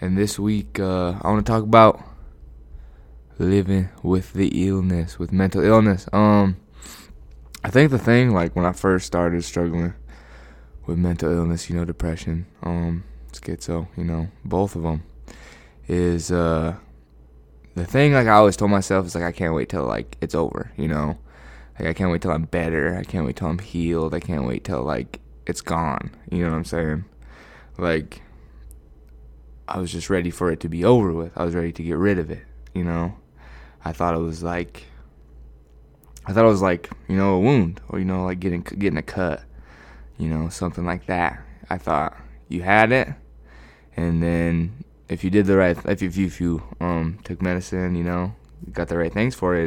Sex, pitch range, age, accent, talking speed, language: male, 75-95 Hz, 20-39, American, 195 wpm, English